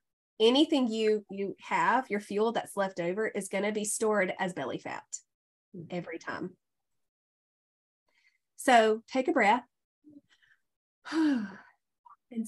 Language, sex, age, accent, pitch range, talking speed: English, female, 30-49, American, 205-265 Hz, 115 wpm